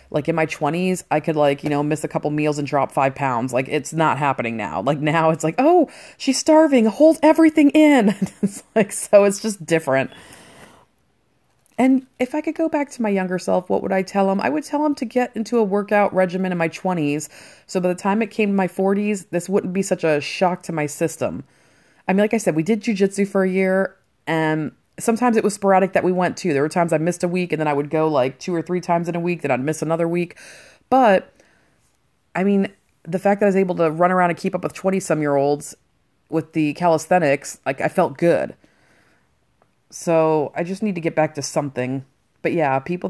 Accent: American